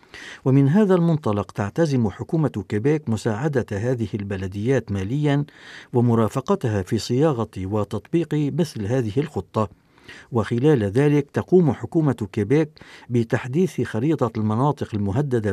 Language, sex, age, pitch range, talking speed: Arabic, male, 60-79, 110-150 Hz, 100 wpm